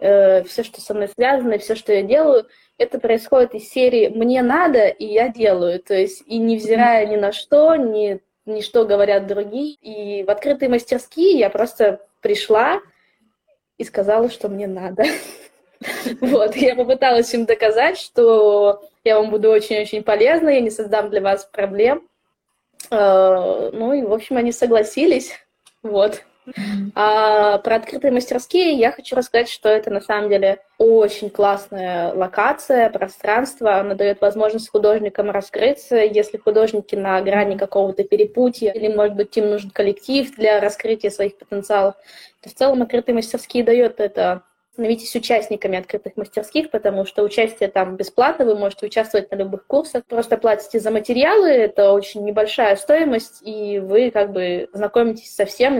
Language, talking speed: Russian, 150 wpm